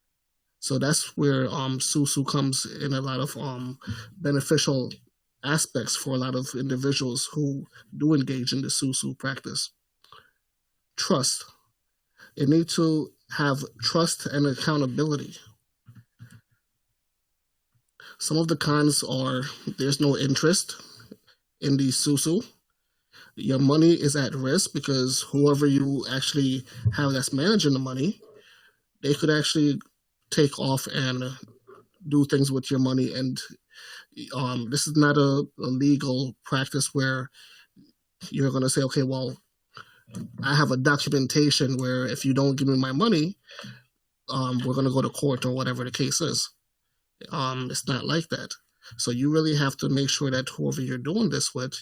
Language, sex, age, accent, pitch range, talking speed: English, male, 20-39, American, 130-145 Hz, 145 wpm